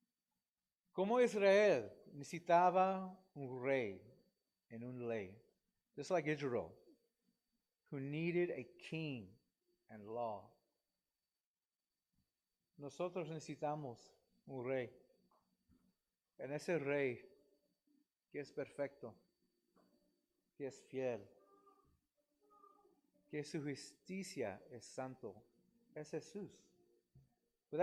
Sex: male